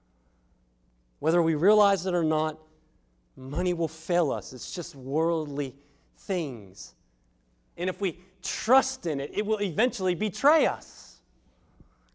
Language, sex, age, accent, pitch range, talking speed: English, male, 40-59, American, 165-235 Hz, 130 wpm